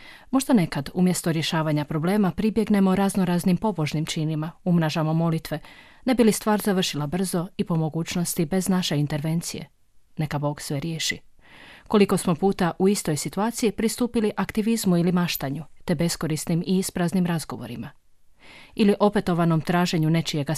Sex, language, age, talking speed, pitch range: female, Croatian, 30-49, 135 wpm, 155-195 Hz